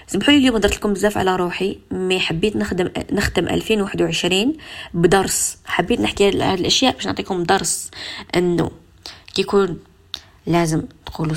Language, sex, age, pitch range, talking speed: Arabic, female, 20-39, 160-195 Hz, 125 wpm